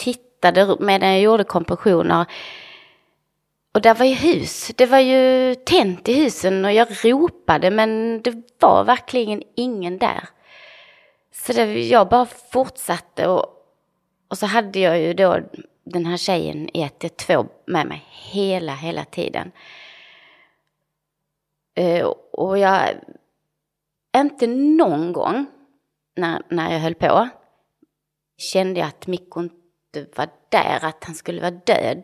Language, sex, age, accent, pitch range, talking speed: Swedish, female, 30-49, native, 170-250 Hz, 130 wpm